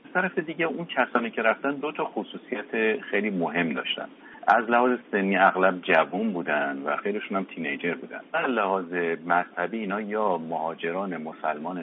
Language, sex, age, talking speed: Persian, male, 50-69, 150 wpm